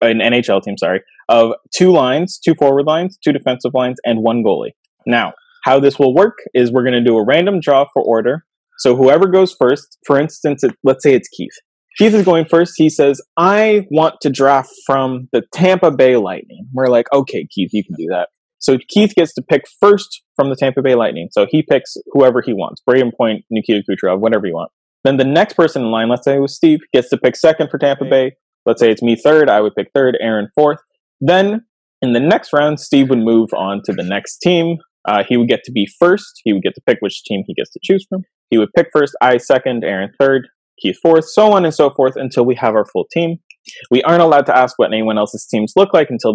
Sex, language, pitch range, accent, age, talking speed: male, English, 120-170 Hz, American, 20-39, 235 wpm